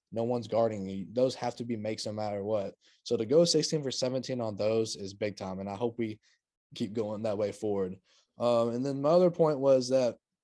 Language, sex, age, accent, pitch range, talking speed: English, male, 20-39, American, 110-135 Hz, 230 wpm